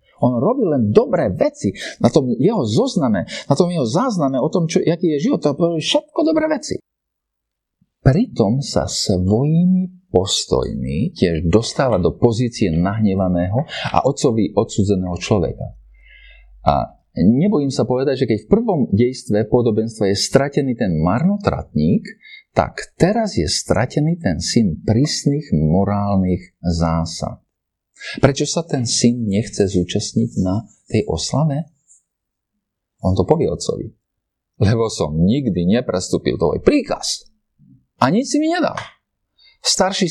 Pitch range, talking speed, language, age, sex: 100-170 Hz, 125 wpm, Slovak, 50-69, male